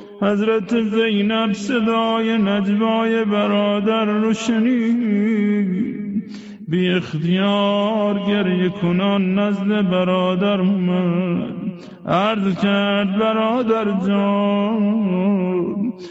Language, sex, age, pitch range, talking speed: Persian, male, 50-69, 200-220 Hz, 65 wpm